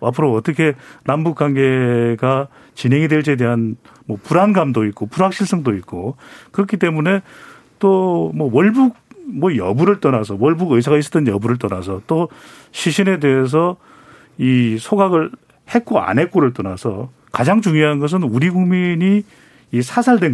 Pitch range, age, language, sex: 125-190 Hz, 40-59, Korean, male